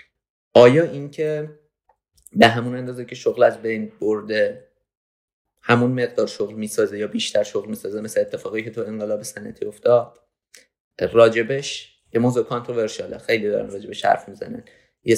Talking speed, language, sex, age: 140 wpm, Persian, male, 30-49